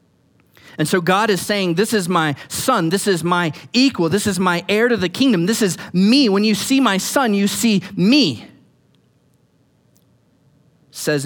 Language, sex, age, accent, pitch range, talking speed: English, male, 40-59, American, 130-185 Hz, 175 wpm